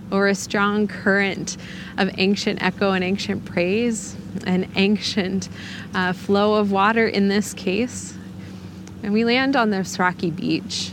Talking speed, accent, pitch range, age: 145 wpm, American, 175-200 Hz, 20-39